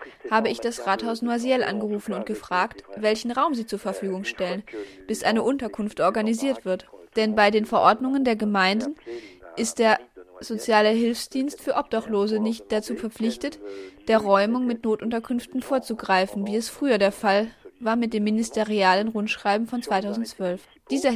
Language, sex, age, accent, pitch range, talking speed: German, female, 20-39, German, 205-240 Hz, 145 wpm